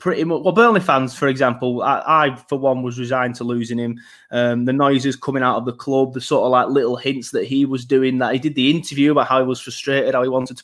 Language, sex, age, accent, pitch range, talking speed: English, male, 20-39, British, 125-160 Hz, 270 wpm